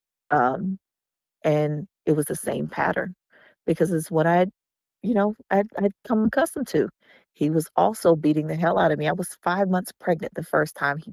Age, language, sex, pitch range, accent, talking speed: 40-59, English, female, 165-230 Hz, American, 200 wpm